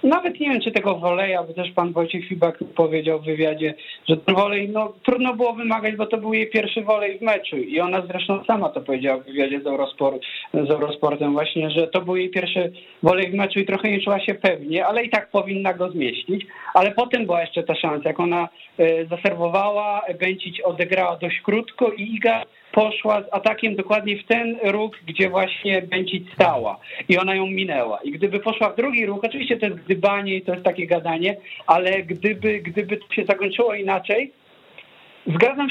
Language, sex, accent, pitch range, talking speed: Polish, male, native, 180-215 Hz, 185 wpm